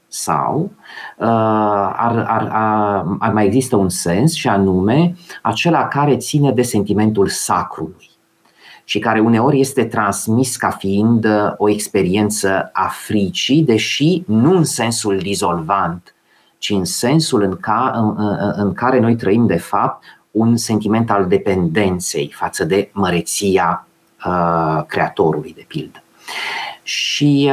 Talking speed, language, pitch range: 110 wpm, Romanian, 100-130 Hz